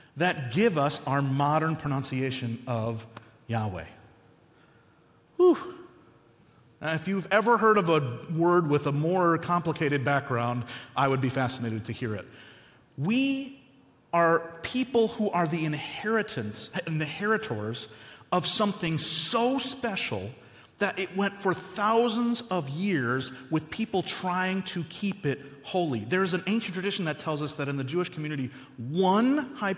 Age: 30-49